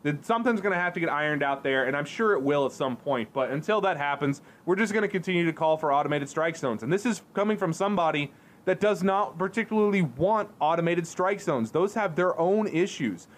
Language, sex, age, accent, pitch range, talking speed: English, male, 20-39, American, 145-195 Hz, 230 wpm